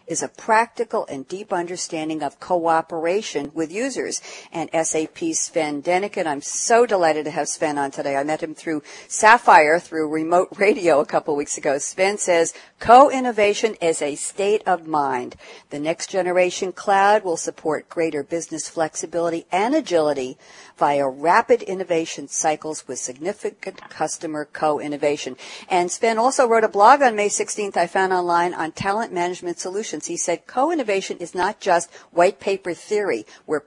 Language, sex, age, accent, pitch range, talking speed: English, female, 60-79, American, 160-215 Hz, 155 wpm